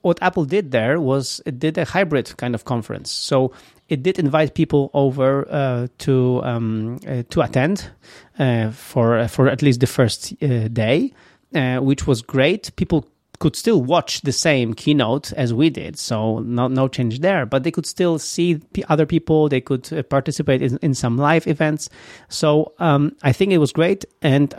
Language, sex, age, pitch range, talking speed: English, male, 30-49, 125-155 Hz, 185 wpm